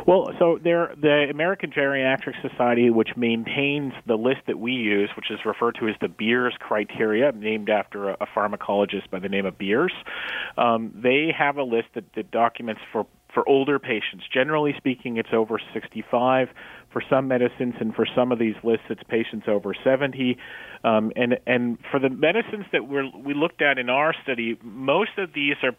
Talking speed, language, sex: 180 wpm, English, male